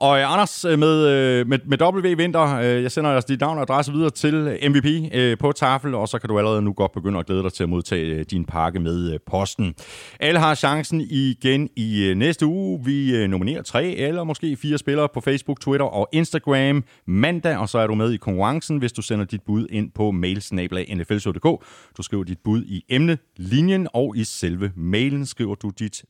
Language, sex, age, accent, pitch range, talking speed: Danish, male, 30-49, native, 100-145 Hz, 200 wpm